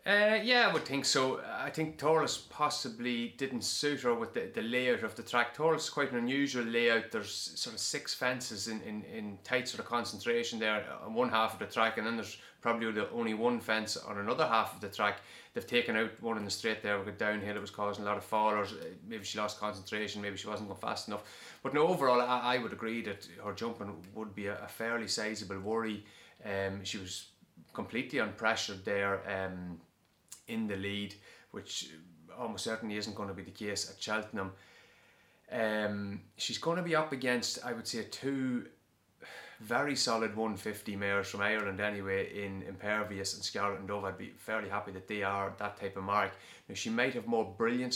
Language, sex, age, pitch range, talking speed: English, male, 30-49, 100-115 Hz, 205 wpm